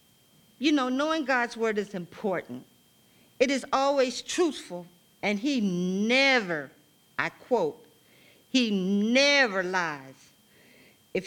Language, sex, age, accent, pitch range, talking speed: English, female, 50-69, American, 170-245 Hz, 105 wpm